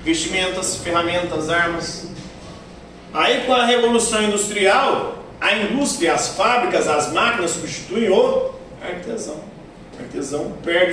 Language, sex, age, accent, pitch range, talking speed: Portuguese, male, 40-59, Brazilian, 150-185 Hz, 110 wpm